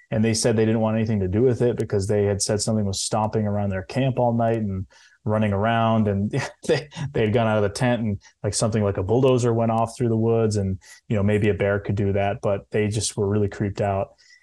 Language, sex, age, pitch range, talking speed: English, male, 20-39, 105-125 Hz, 250 wpm